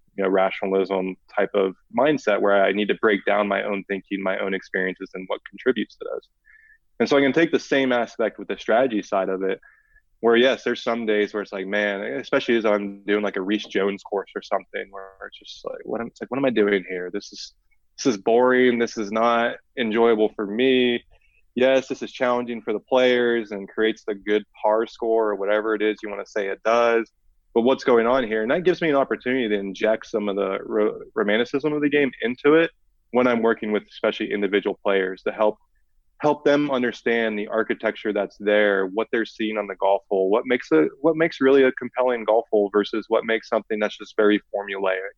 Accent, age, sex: American, 20-39, male